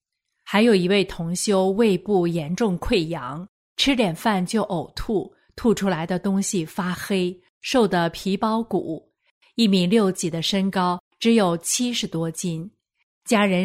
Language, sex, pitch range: Chinese, female, 180-225 Hz